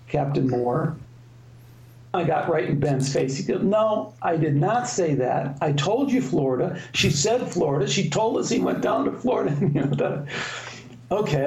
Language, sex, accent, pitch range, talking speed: English, male, American, 125-165 Hz, 165 wpm